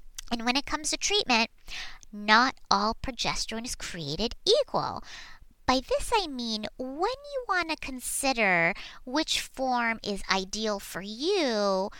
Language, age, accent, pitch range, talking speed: English, 30-49, American, 205-285 Hz, 135 wpm